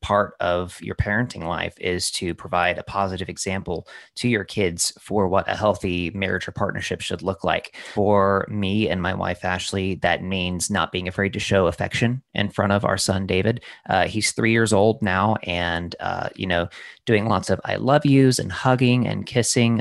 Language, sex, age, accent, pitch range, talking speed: English, male, 30-49, American, 90-110 Hz, 195 wpm